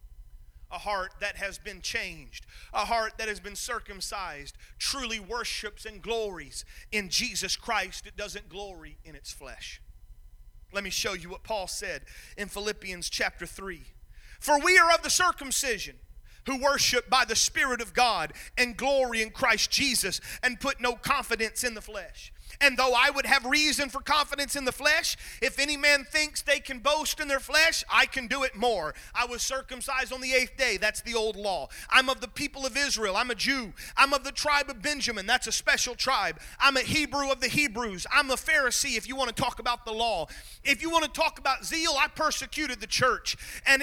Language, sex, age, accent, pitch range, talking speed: English, male, 30-49, American, 225-295 Hz, 200 wpm